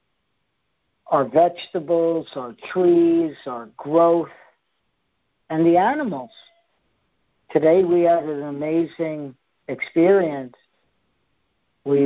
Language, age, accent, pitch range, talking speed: English, 50-69, American, 140-165 Hz, 80 wpm